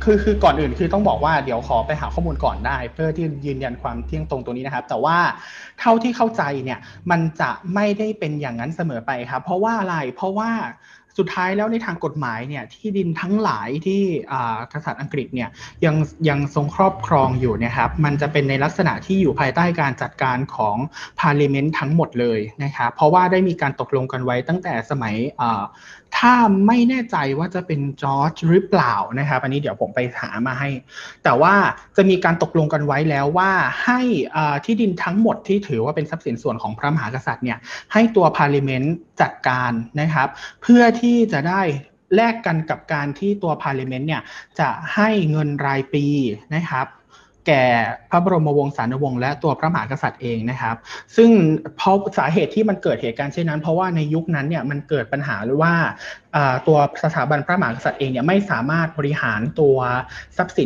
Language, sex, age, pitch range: Thai, male, 20-39, 135-180 Hz